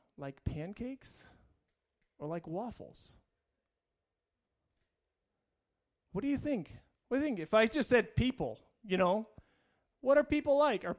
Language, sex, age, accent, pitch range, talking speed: English, male, 30-49, American, 175-235 Hz, 135 wpm